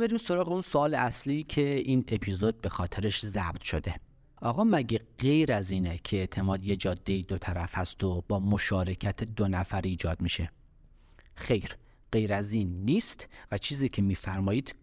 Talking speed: 160 wpm